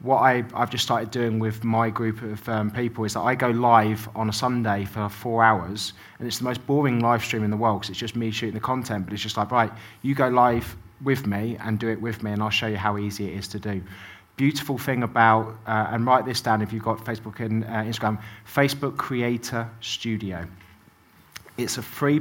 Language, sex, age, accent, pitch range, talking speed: English, male, 20-39, British, 105-120 Hz, 230 wpm